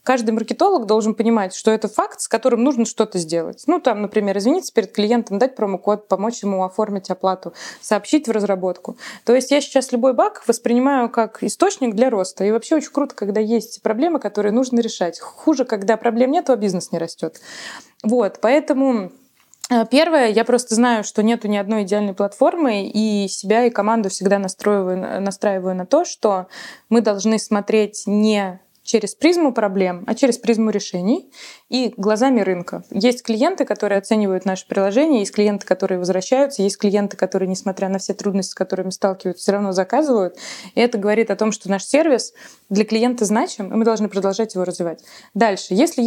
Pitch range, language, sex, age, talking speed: 195-240 Hz, Russian, female, 20-39, 175 wpm